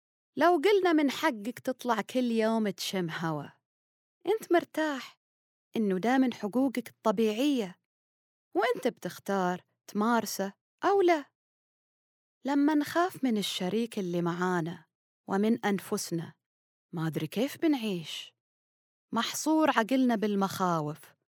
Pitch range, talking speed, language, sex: 180-260 Hz, 100 wpm, Arabic, female